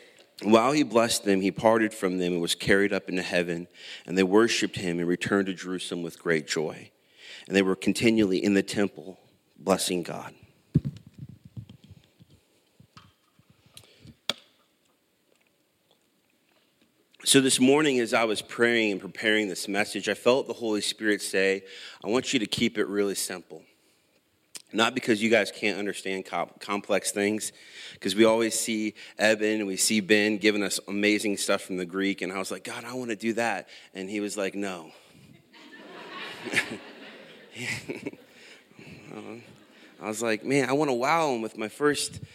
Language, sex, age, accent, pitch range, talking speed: English, male, 40-59, American, 95-115 Hz, 155 wpm